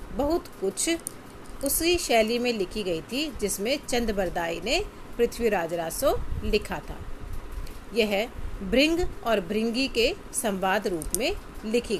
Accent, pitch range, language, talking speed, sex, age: native, 195-275 Hz, Hindi, 125 wpm, female, 40-59